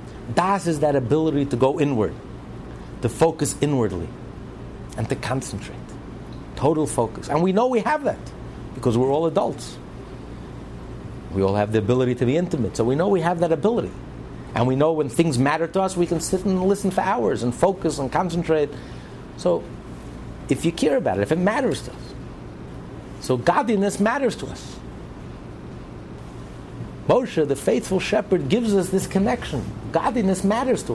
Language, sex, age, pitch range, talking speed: English, male, 60-79, 115-180 Hz, 165 wpm